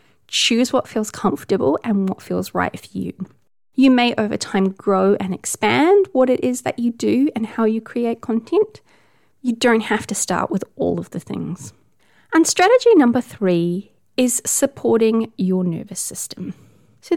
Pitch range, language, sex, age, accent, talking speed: 185-240 Hz, English, female, 30-49, Australian, 170 wpm